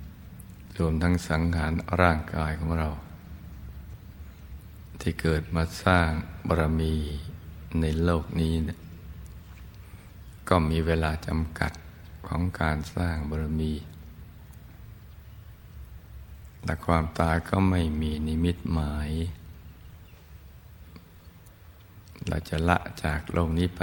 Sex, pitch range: male, 80-90 Hz